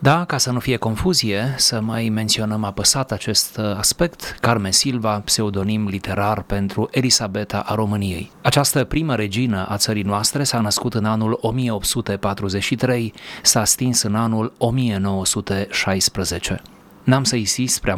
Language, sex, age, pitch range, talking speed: Romanian, male, 30-49, 100-130 Hz, 130 wpm